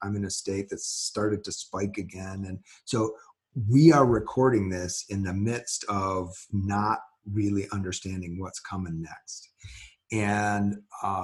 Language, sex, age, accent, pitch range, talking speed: English, male, 40-59, American, 100-115 Hz, 145 wpm